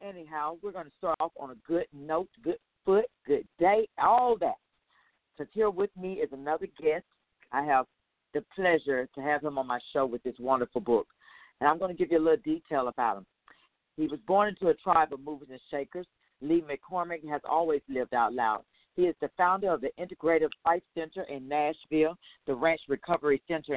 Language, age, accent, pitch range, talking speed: English, 50-69, American, 140-175 Hz, 200 wpm